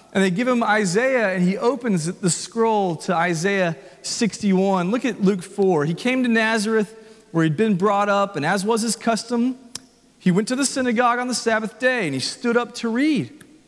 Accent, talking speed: American, 200 wpm